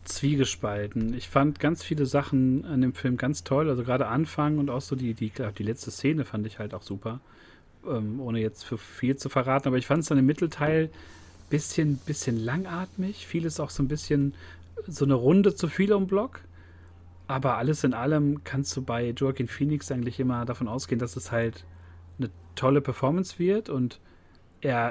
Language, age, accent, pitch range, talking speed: German, 40-59, German, 115-150 Hz, 195 wpm